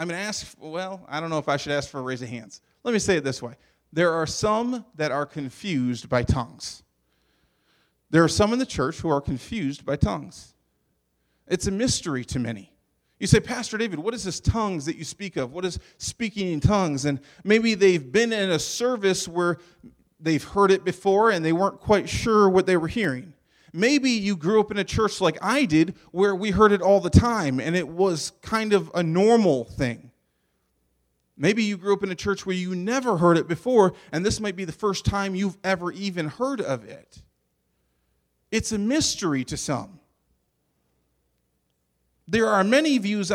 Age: 30-49